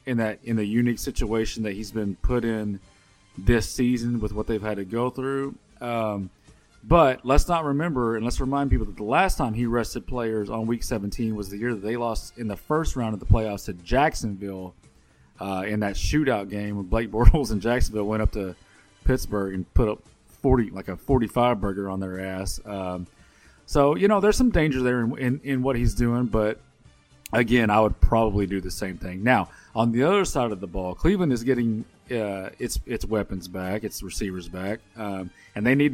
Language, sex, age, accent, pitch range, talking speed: English, male, 30-49, American, 100-120 Hz, 210 wpm